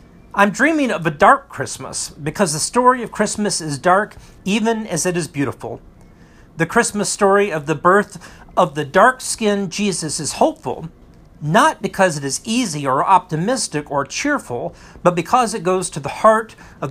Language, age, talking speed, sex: English, 50-69, 165 wpm, male